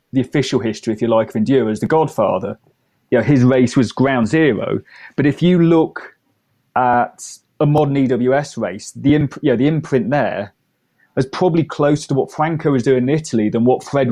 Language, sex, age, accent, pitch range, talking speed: English, male, 30-49, British, 120-150 Hz, 200 wpm